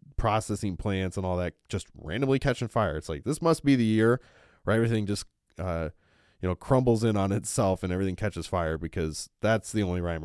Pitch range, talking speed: 95-125 Hz, 205 wpm